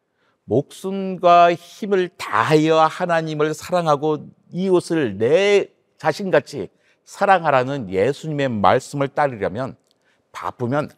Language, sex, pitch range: Korean, male, 125-185 Hz